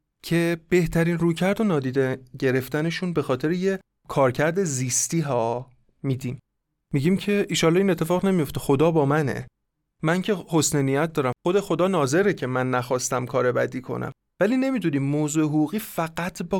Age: 30-49